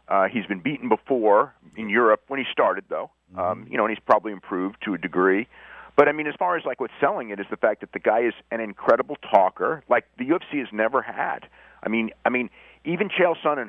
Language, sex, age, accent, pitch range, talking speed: English, male, 40-59, American, 90-145 Hz, 235 wpm